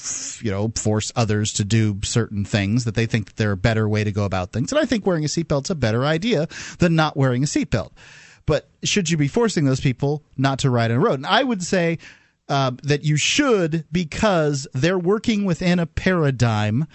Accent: American